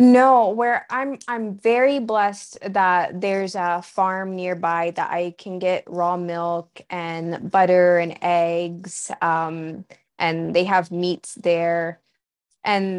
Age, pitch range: 20-39, 170-200 Hz